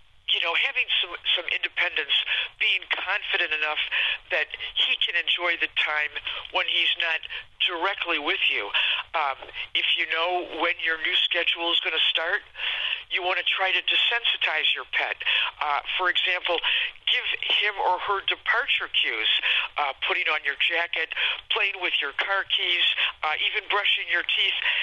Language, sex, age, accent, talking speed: English, male, 50-69, American, 155 wpm